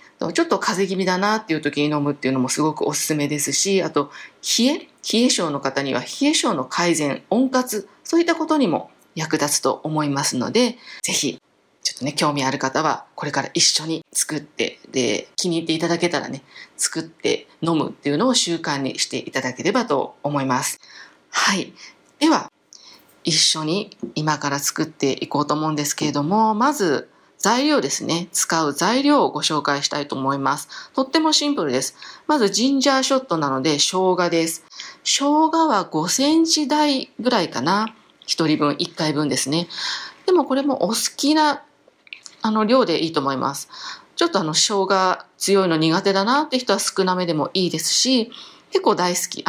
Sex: female